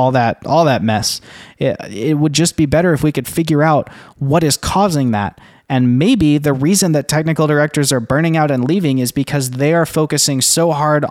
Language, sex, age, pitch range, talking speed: English, male, 20-39, 120-150 Hz, 210 wpm